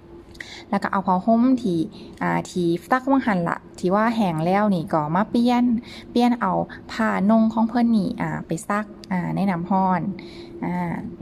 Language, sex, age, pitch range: Thai, female, 20-39, 185-220 Hz